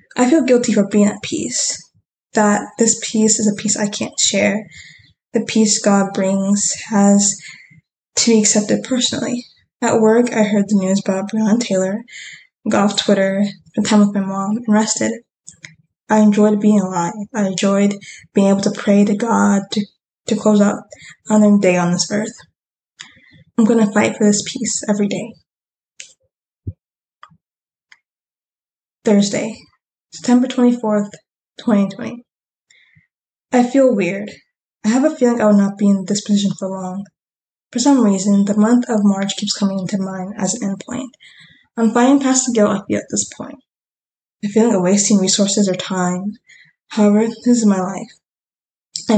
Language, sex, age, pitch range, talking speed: English, female, 10-29, 195-225 Hz, 160 wpm